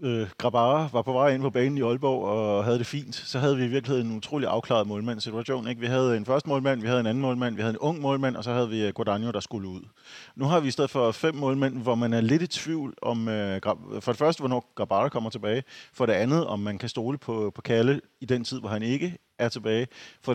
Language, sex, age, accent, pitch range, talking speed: Danish, male, 30-49, native, 105-130 Hz, 250 wpm